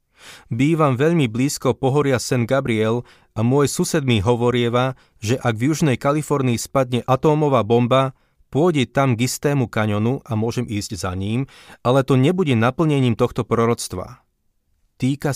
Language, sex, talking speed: Slovak, male, 135 wpm